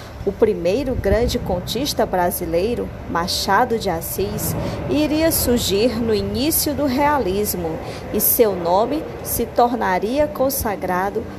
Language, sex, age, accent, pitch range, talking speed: Portuguese, female, 40-59, Brazilian, 190-265 Hz, 105 wpm